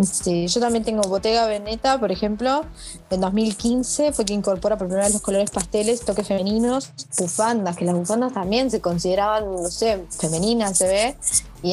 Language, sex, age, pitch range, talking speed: Spanish, female, 20-39, 185-220 Hz, 175 wpm